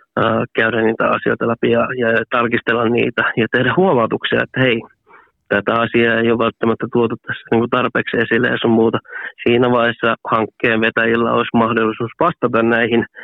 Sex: male